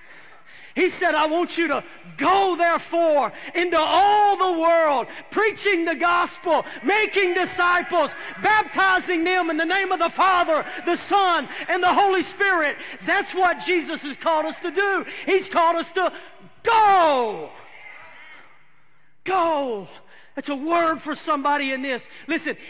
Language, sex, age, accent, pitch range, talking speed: English, male, 40-59, American, 295-360 Hz, 140 wpm